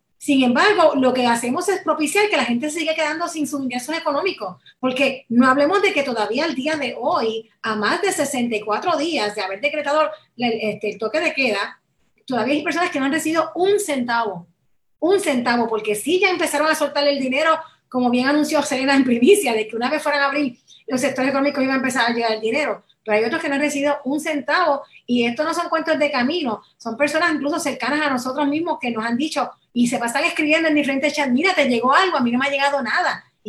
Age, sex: 30-49, female